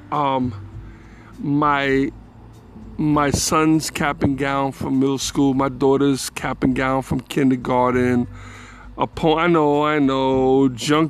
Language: English